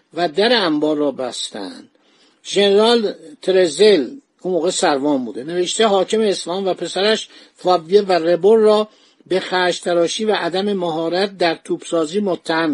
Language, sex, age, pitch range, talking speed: Persian, male, 50-69, 175-220 Hz, 130 wpm